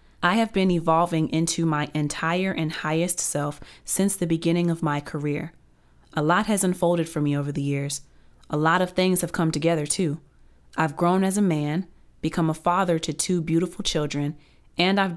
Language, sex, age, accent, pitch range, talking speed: English, female, 30-49, American, 150-175 Hz, 185 wpm